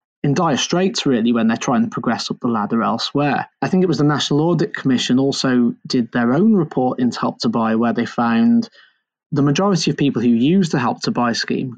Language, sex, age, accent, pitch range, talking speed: English, male, 20-39, British, 130-190 Hz, 225 wpm